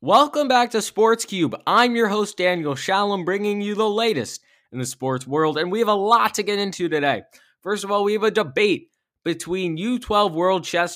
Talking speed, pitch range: 210 wpm, 145-195 Hz